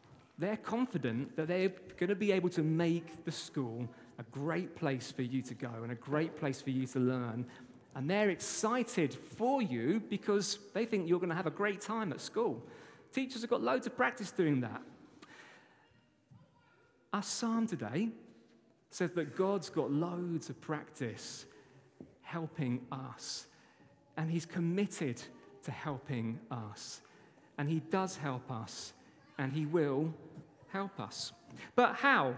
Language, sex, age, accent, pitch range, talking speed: English, male, 40-59, British, 150-225 Hz, 150 wpm